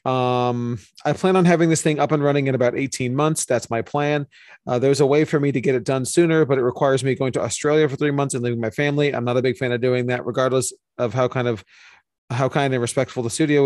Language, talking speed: English, 270 wpm